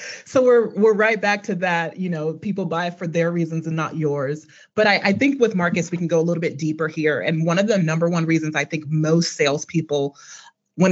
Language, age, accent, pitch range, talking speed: English, 30-49, American, 160-200 Hz, 235 wpm